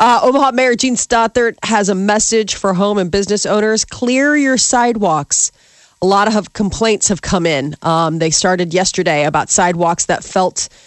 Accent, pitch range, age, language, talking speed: American, 170-210 Hz, 30-49, English, 170 wpm